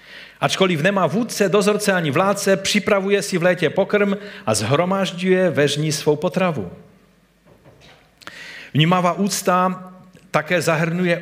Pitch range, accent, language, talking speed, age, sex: 135-185 Hz, native, Czech, 105 wpm, 50-69, male